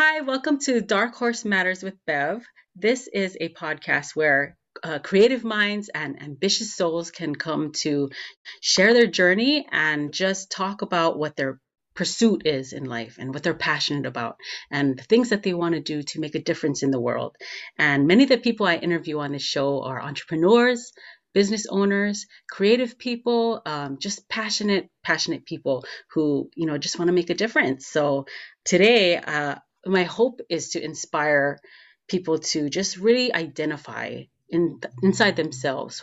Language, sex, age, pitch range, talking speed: English, female, 30-49, 145-195 Hz, 165 wpm